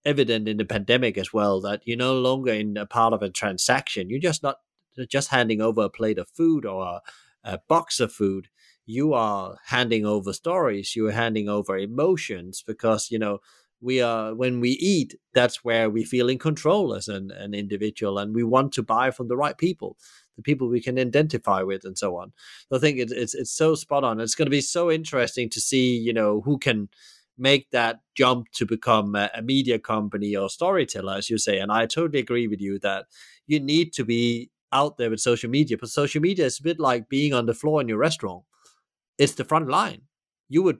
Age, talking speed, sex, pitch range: 30-49, 215 wpm, male, 105-135 Hz